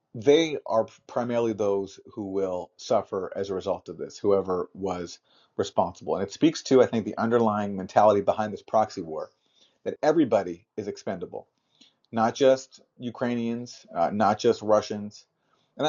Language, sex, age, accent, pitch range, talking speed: English, male, 40-59, American, 105-125 Hz, 150 wpm